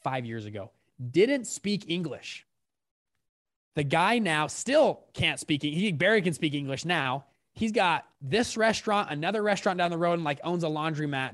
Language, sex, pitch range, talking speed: English, male, 130-195 Hz, 170 wpm